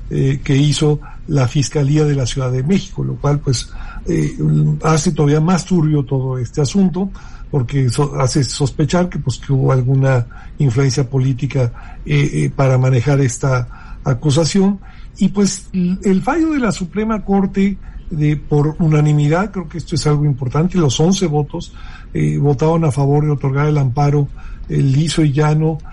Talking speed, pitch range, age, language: 160 wpm, 135-170 Hz, 50-69, Spanish